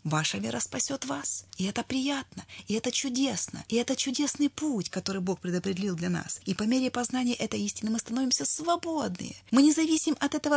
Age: 30-49